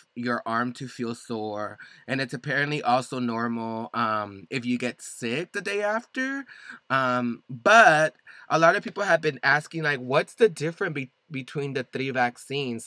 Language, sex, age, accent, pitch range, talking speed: English, male, 20-39, American, 120-150 Hz, 170 wpm